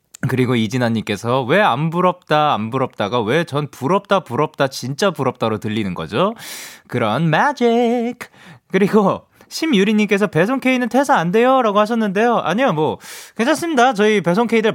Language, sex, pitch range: Korean, male, 125-205 Hz